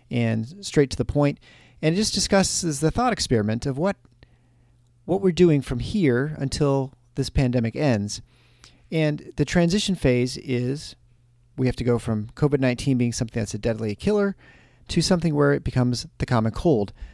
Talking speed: 170 wpm